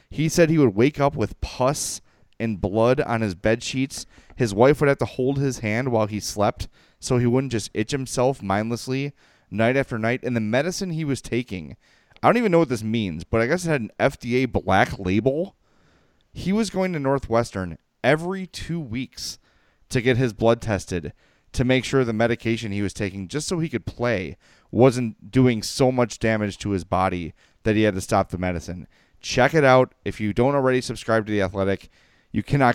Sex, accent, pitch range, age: male, American, 100-130 Hz, 30-49